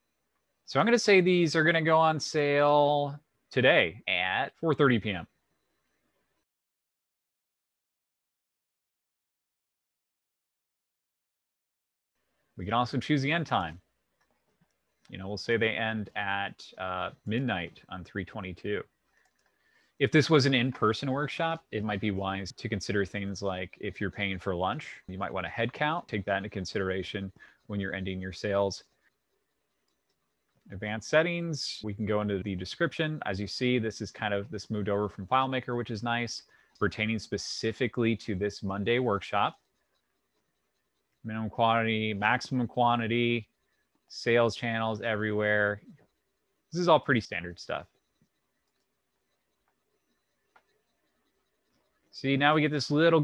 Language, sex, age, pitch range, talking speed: English, male, 30-49, 100-135 Hz, 130 wpm